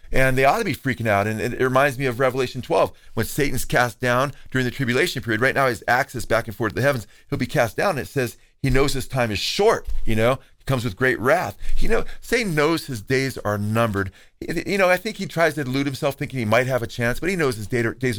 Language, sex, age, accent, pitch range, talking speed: English, male, 40-59, American, 110-140 Hz, 265 wpm